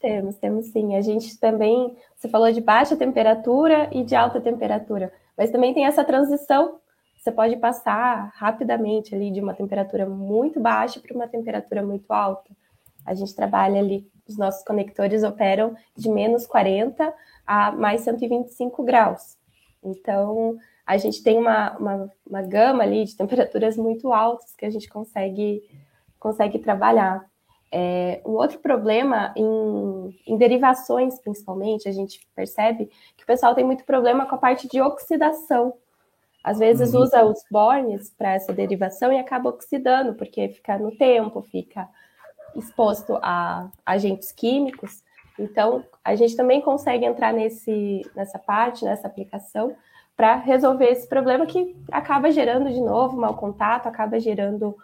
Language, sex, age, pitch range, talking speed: Portuguese, female, 20-39, 205-250 Hz, 145 wpm